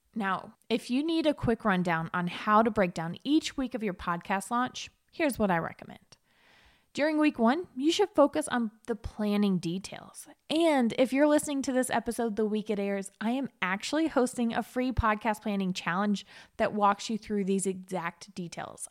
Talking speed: 185 wpm